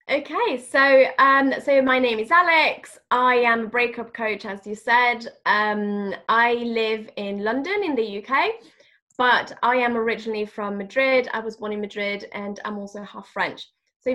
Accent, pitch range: British, 200-240 Hz